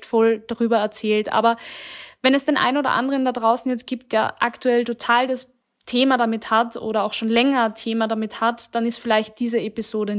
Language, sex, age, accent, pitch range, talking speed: German, female, 20-39, German, 210-245 Hz, 195 wpm